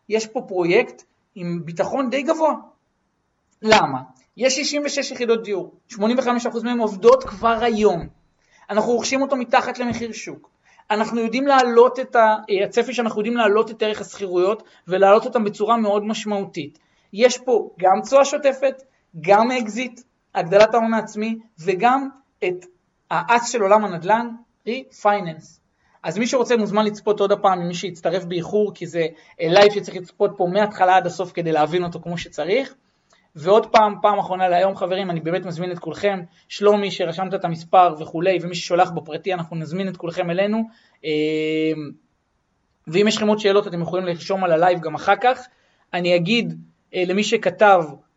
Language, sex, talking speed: Hebrew, male, 155 wpm